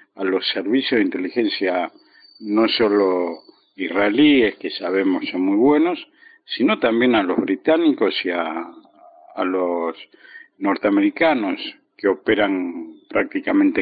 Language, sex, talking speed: Spanish, male, 115 wpm